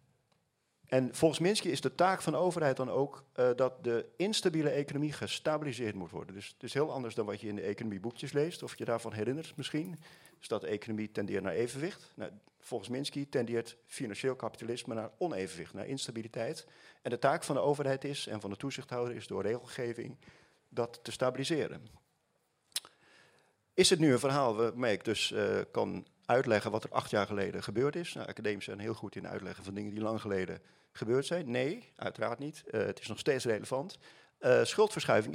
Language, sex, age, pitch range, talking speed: Dutch, male, 40-59, 110-140 Hz, 190 wpm